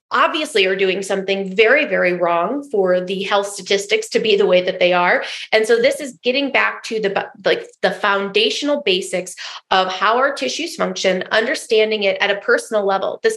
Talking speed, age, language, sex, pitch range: 190 wpm, 30-49, English, female, 200-255 Hz